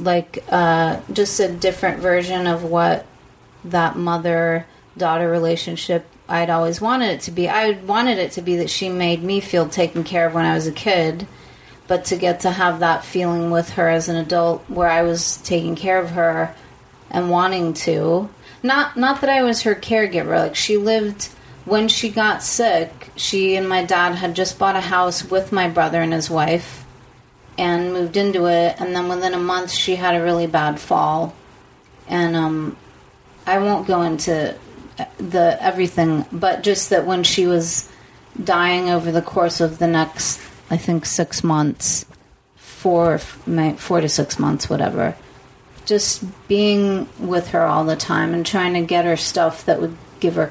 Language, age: English, 30-49